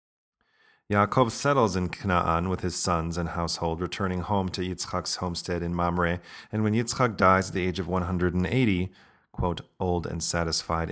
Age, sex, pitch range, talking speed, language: 40-59, male, 85-105 Hz, 160 wpm, English